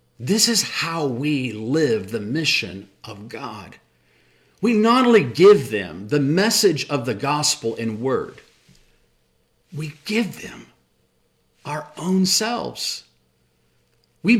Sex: male